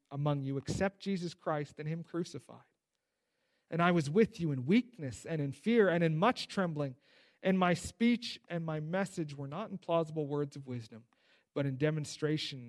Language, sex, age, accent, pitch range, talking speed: English, male, 40-59, American, 140-180 Hz, 180 wpm